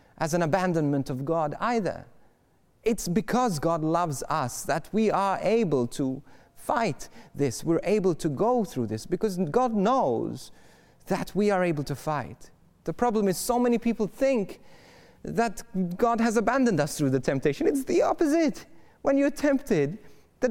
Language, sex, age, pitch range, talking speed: English, male, 30-49, 135-210 Hz, 160 wpm